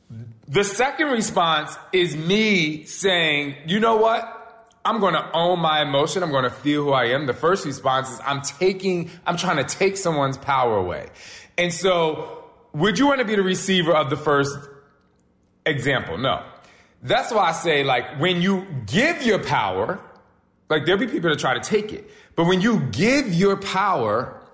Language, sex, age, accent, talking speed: English, male, 20-39, American, 180 wpm